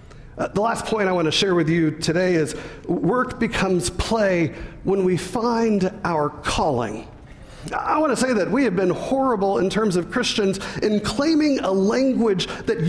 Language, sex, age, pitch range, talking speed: English, male, 40-59, 160-235 Hz, 175 wpm